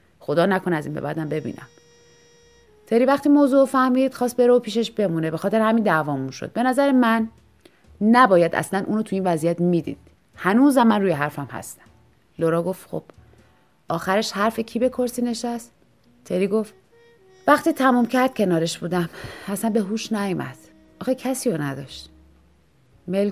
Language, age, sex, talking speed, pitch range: Persian, 30-49, female, 155 wpm, 175-260 Hz